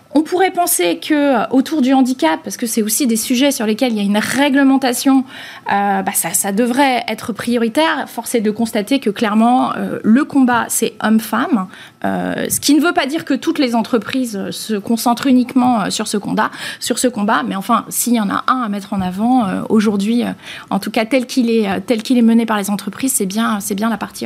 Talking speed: 200 wpm